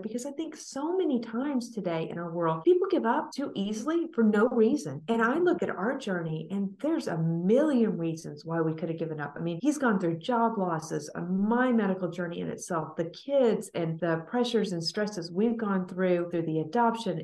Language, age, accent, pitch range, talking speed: English, 40-59, American, 175-245 Hz, 215 wpm